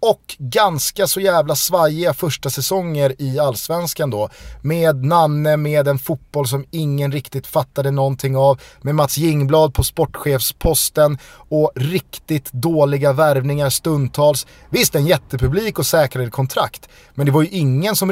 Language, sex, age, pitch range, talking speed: Swedish, male, 30-49, 125-155 Hz, 140 wpm